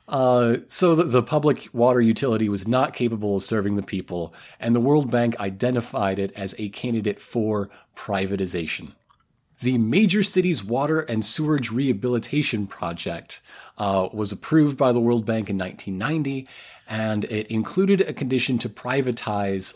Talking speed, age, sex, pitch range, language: 150 wpm, 30-49, male, 100-125 Hz, English